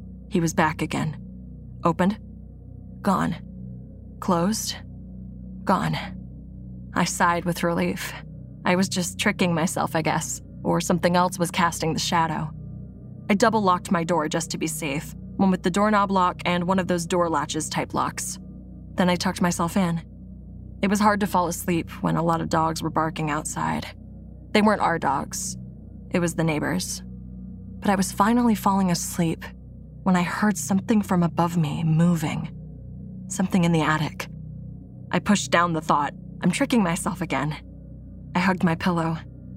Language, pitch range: English, 155-185 Hz